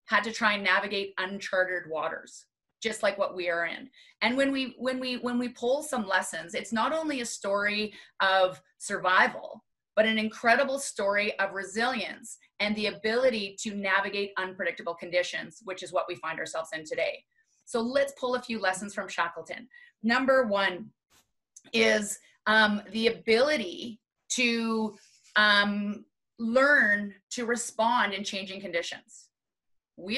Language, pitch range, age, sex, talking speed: English, 200-255 Hz, 30-49, female, 145 wpm